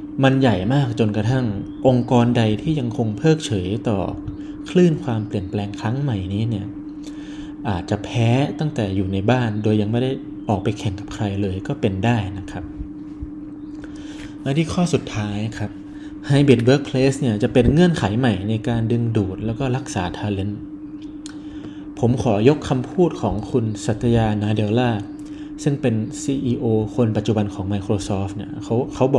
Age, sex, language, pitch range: 20-39, male, Thai, 105-160 Hz